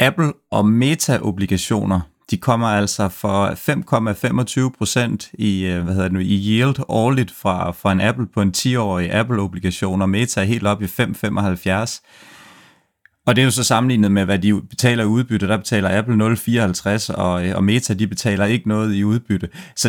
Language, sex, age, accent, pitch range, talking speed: Danish, male, 30-49, native, 95-115 Hz, 170 wpm